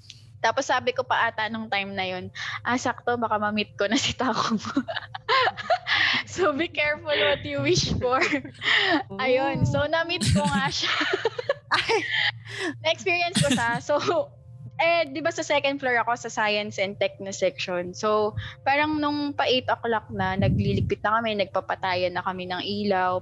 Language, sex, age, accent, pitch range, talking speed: English, female, 20-39, Filipino, 195-275 Hz, 150 wpm